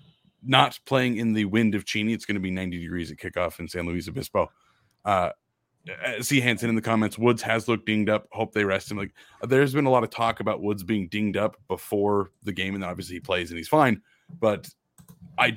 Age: 30-49